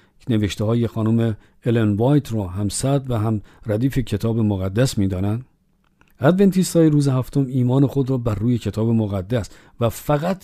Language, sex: Persian, male